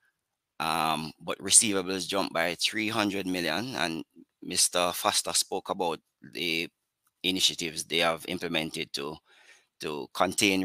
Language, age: English, 30-49